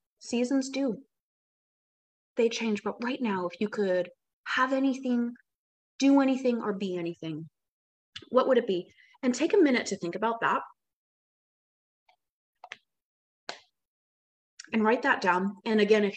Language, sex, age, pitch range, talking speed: English, female, 20-39, 190-260 Hz, 135 wpm